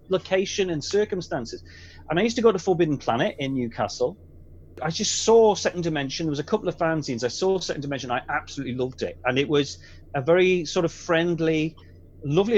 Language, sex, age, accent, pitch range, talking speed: English, male, 30-49, British, 130-180 Hz, 195 wpm